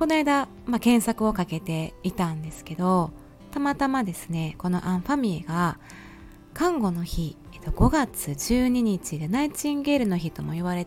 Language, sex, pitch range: Japanese, female, 170-235 Hz